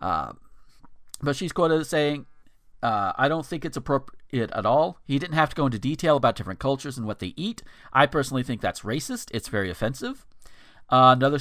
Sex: male